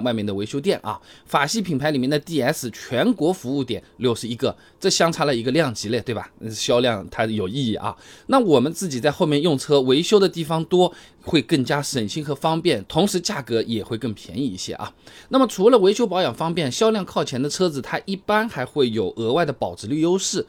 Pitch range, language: 120-170 Hz, Chinese